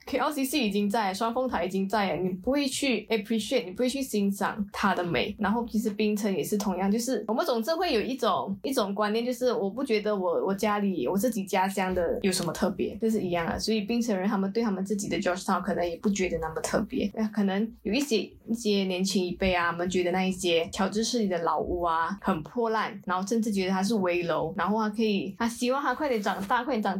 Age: 20-39